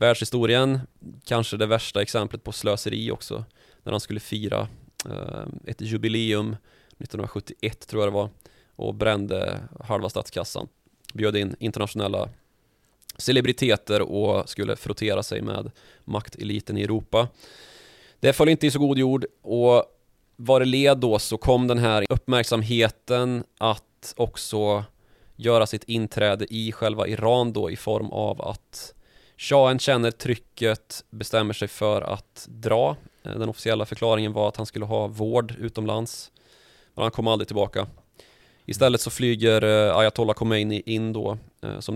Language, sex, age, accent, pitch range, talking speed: Swedish, male, 20-39, native, 105-120 Hz, 135 wpm